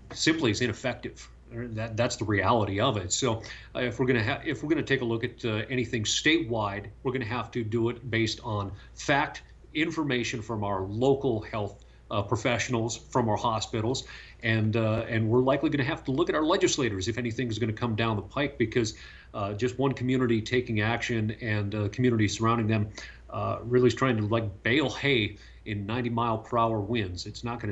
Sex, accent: male, American